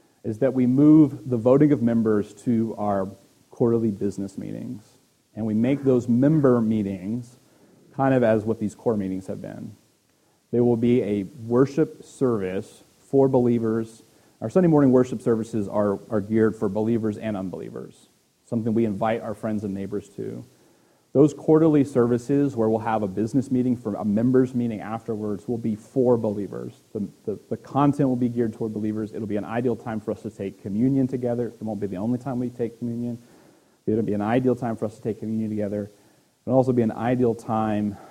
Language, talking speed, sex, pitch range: English, 190 wpm, male, 105-125 Hz